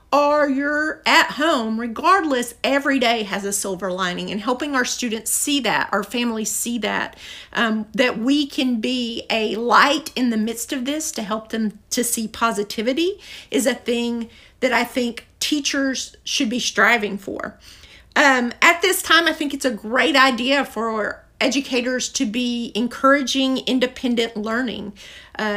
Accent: American